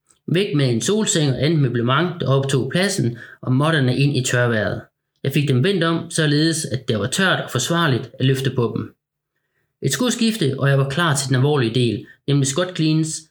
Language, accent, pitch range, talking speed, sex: Danish, native, 125-160 Hz, 200 wpm, male